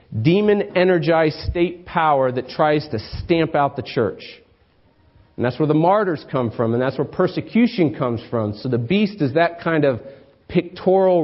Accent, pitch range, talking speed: American, 115-165 Hz, 165 wpm